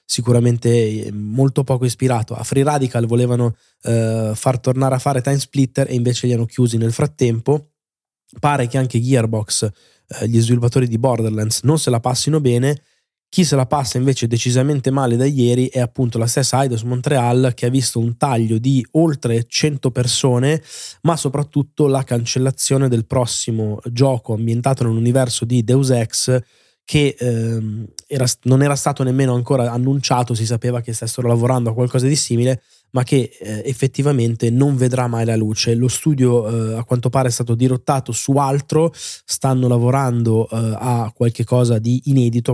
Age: 20-39